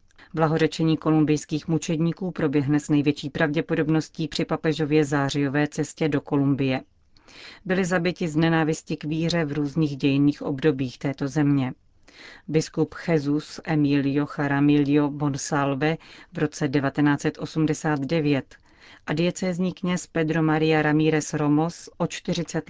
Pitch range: 145-165 Hz